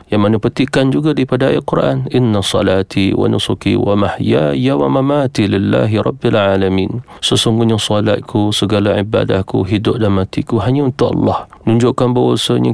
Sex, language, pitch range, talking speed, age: male, Malay, 100-120 Hz, 125 wpm, 40-59